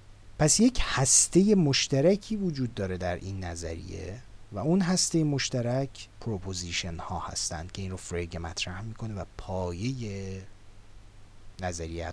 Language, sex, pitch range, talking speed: Persian, male, 100-135 Hz, 125 wpm